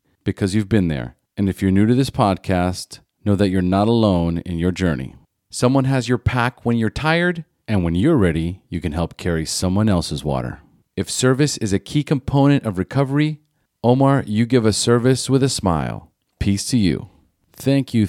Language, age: English, 40-59